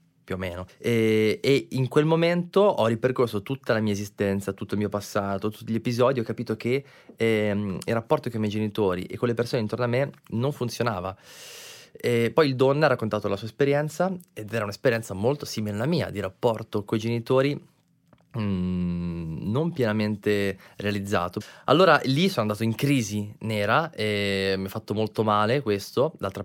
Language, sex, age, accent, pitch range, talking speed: Italian, male, 20-39, native, 100-125 Hz, 180 wpm